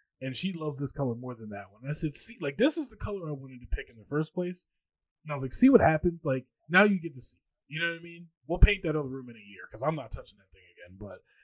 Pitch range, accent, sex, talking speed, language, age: 120-160 Hz, American, male, 320 wpm, English, 20-39